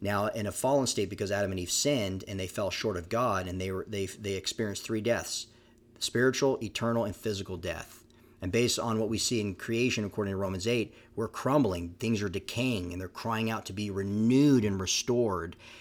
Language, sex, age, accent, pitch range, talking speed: English, male, 40-59, American, 100-120 Hz, 210 wpm